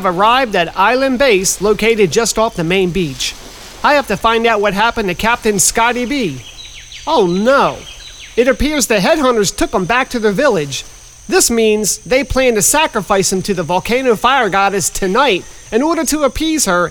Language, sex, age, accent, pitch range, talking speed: English, male, 40-59, American, 175-240 Hz, 180 wpm